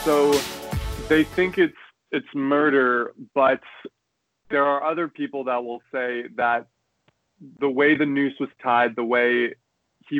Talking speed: 140 wpm